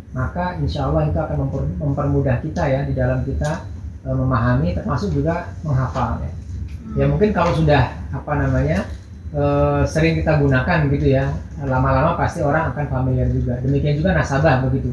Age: 30-49